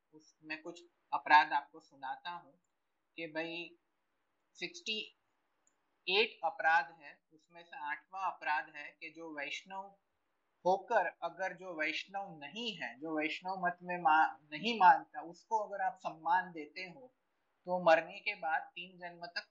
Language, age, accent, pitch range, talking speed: Hindi, 30-49, native, 160-200 Hz, 140 wpm